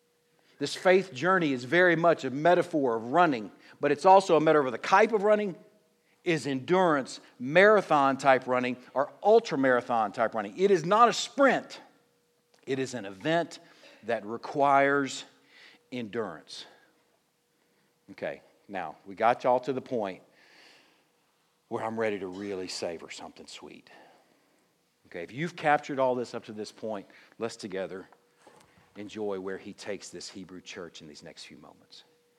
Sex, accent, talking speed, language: male, American, 145 wpm, English